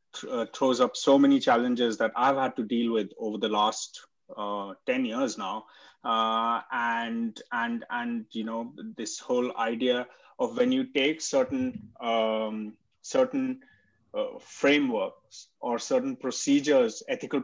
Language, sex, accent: English, male, Indian